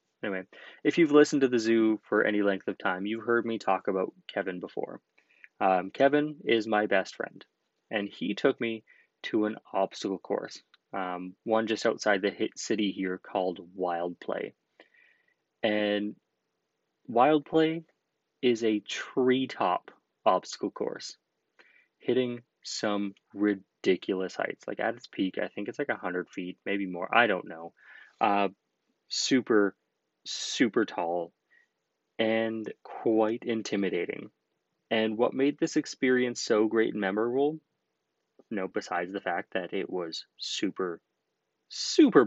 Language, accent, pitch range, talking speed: English, American, 100-125 Hz, 140 wpm